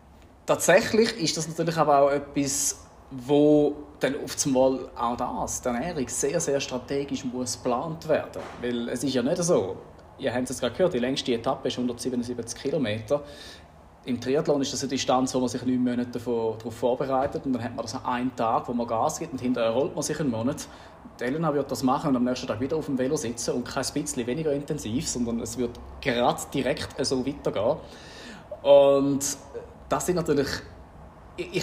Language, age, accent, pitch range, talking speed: German, 30-49, German, 120-145 Hz, 185 wpm